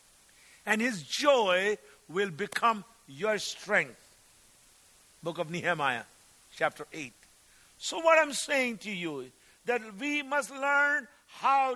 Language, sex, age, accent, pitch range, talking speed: English, male, 50-69, Indian, 140-215 Hz, 120 wpm